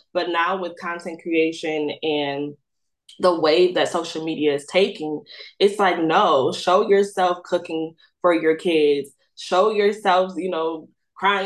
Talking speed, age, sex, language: 140 wpm, 20-39, female, English